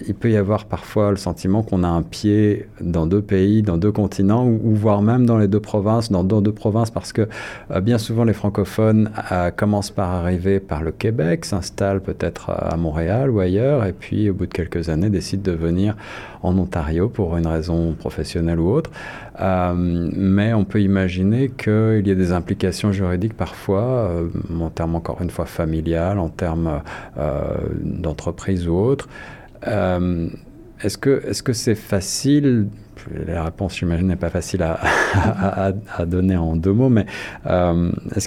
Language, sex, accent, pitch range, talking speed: French, male, French, 85-105 Hz, 180 wpm